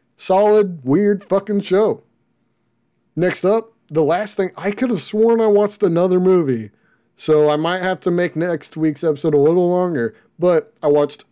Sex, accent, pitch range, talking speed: male, American, 135-195 Hz, 170 wpm